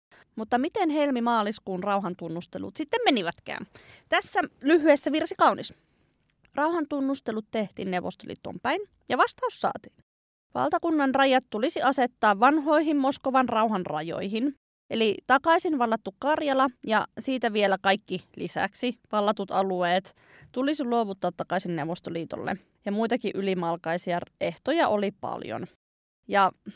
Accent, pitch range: native, 190-275 Hz